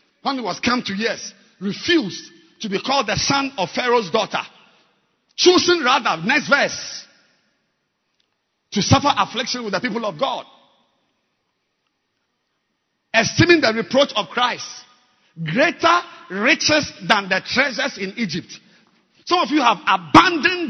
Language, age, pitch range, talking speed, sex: English, 50-69, 195-265 Hz, 130 wpm, male